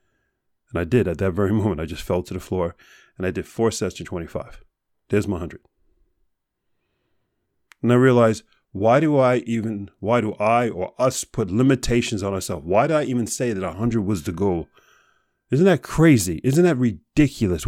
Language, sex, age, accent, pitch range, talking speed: English, male, 40-59, American, 95-125 Hz, 185 wpm